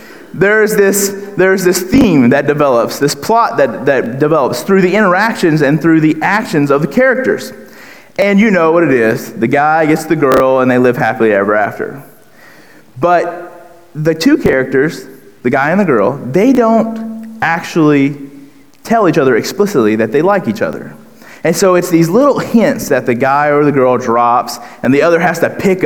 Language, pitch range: English, 130-190 Hz